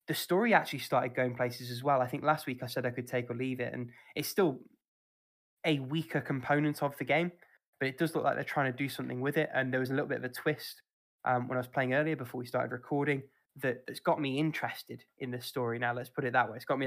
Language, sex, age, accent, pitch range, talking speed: English, male, 10-29, British, 125-140 Hz, 270 wpm